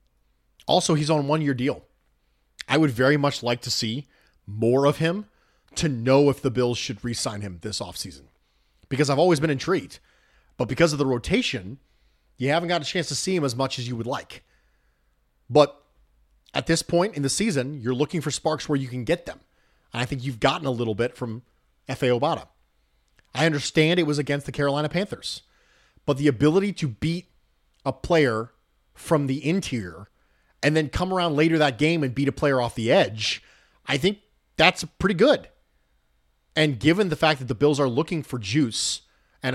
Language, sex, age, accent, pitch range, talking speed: English, male, 30-49, American, 120-160 Hz, 190 wpm